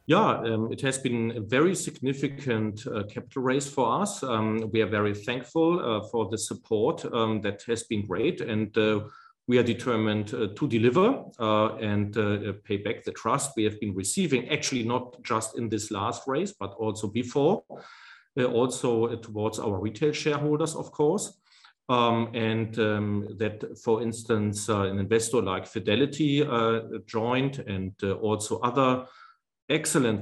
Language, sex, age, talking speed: English, male, 40-59, 165 wpm